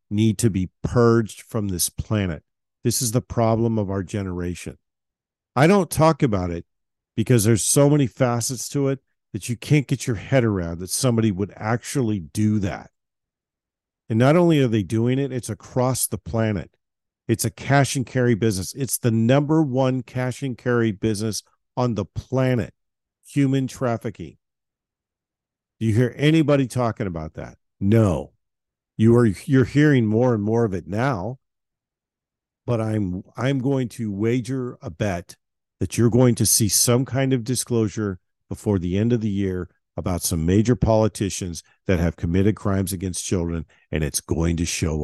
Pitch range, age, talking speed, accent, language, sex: 95-125 Hz, 50-69, 165 wpm, American, English, male